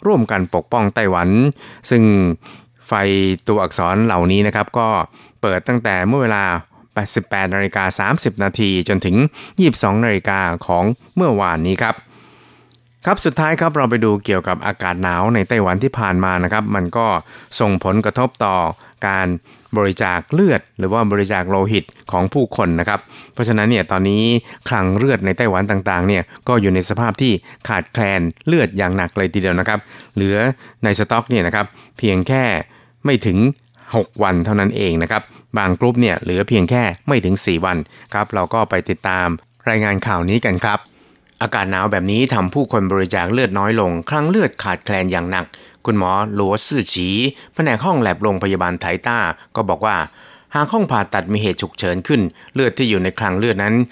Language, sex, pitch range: Thai, male, 95-120 Hz